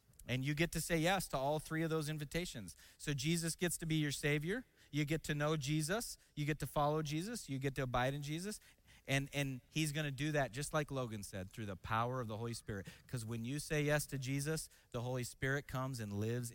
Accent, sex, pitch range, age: American, male, 120-155 Hz, 30-49